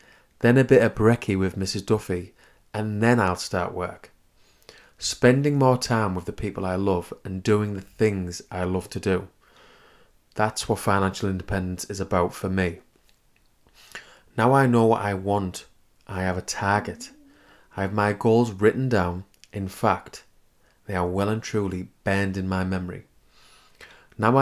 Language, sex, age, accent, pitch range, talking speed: English, male, 30-49, British, 95-115 Hz, 160 wpm